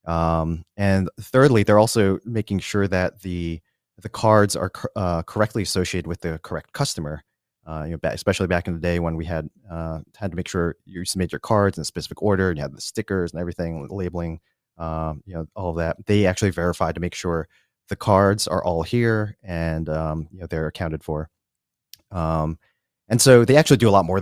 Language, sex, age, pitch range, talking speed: English, male, 30-49, 85-100 Hz, 195 wpm